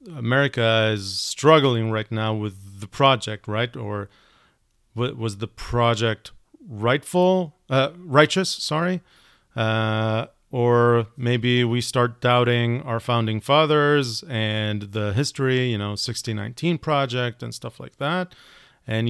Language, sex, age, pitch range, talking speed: Hebrew, male, 40-59, 110-140 Hz, 125 wpm